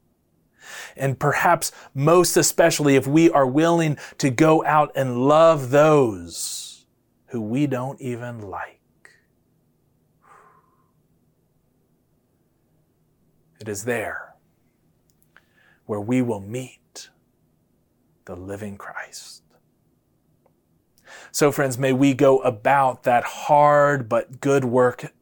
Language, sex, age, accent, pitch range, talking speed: English, male, 30-49, American, 115-140 Hz, 95 wpm